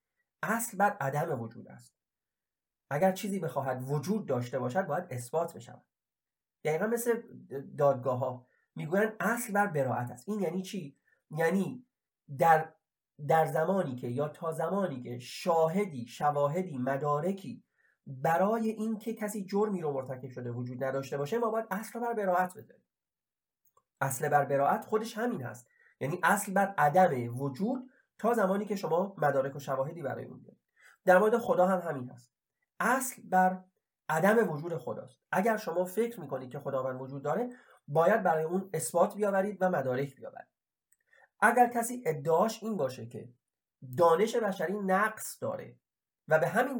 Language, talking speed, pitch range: Persian, 145 wpm, 140-205 Hz